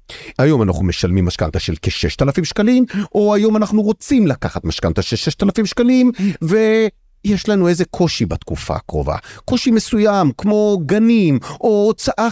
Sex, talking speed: male, 135 wpm